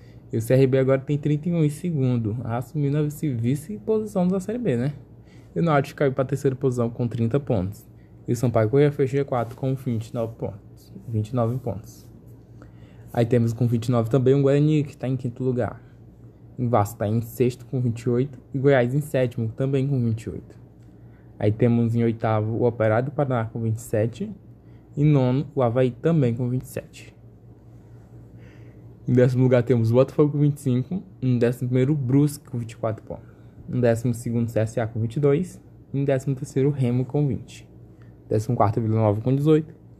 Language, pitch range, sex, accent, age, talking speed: Portuguese, 115-140 Hz, male, Brazilian, 20-39, 180 wpm